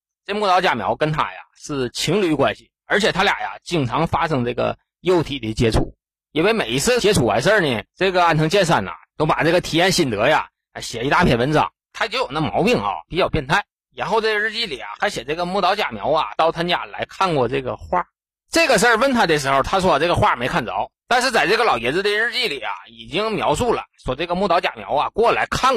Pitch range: 140-200 Hz